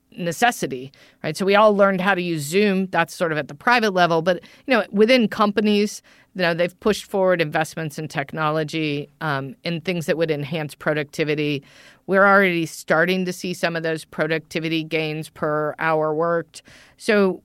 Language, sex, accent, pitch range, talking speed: English, female, American, 165-210 Hz, 175 wpm